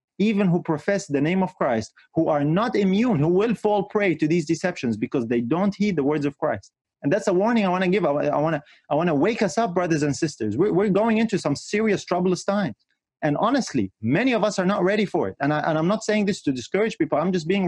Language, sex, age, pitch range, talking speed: English, male, 30-49, 150-200 Hz, 250 wpm